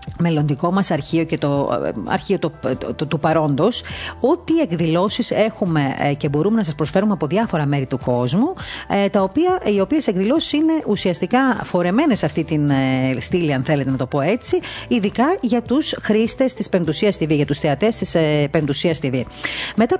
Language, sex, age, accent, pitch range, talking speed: Greek, female, 40-59, native, 155-230 Hz, 170 wpm